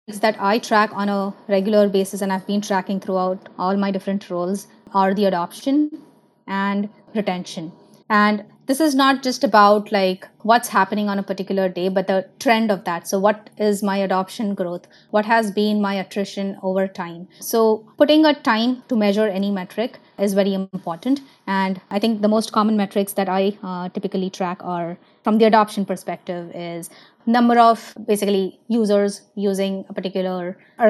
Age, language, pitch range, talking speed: 20-39, English, 190-220 Hz, 175 wpm